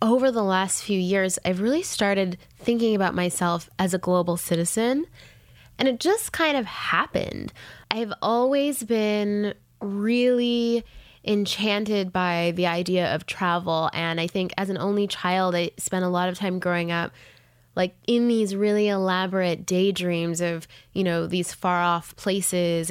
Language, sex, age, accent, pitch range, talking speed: English, female, 20-39, American, 175-210 Hz, 155 wpm